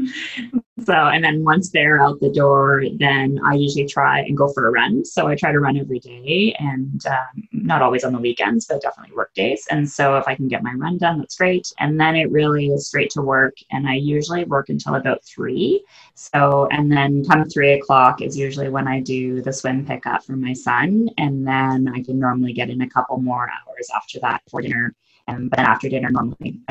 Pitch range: 125-150 Hz